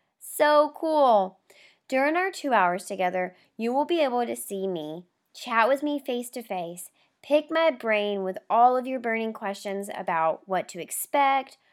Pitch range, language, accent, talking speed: 195-260 Hz, English, American, 170 wpm